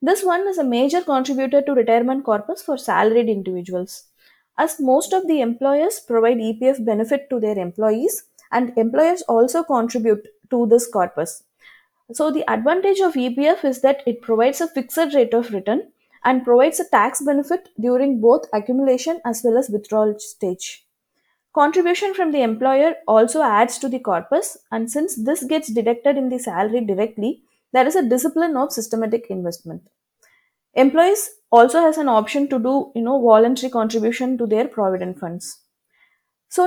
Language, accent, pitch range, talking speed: English, Indian, 225-295 Hz, 160 wpm